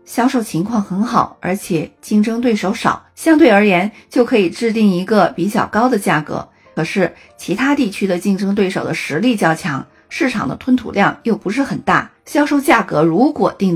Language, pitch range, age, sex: Chinese, 175-250 Hz, 50-69, female